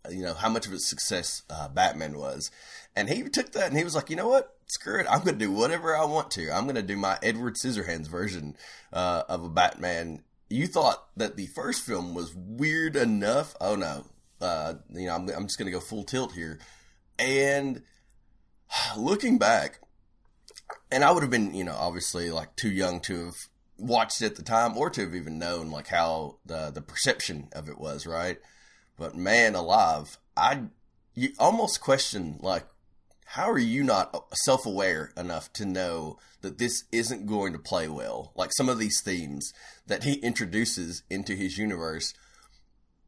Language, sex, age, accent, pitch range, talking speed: English, male, 30-49, American, 85-130 Hz, 190 wpm